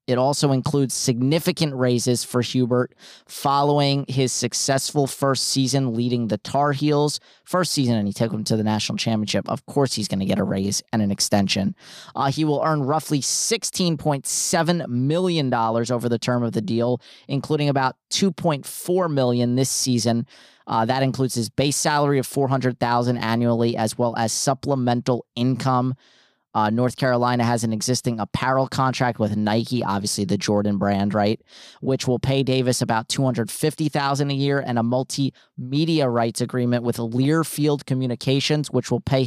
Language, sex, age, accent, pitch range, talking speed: English, male, 30-49, American, 120-140 Hz, 160 wpm